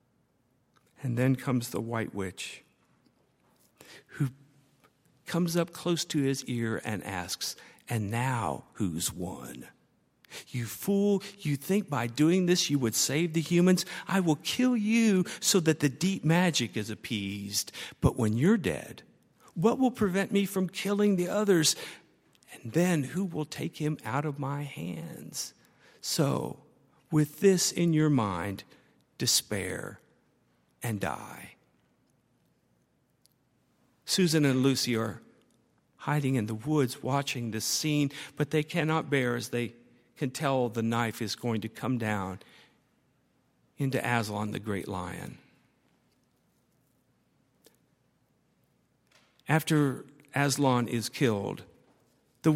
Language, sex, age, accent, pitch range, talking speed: English, male, 50-69, American, 115-160 Hz, 125 wpm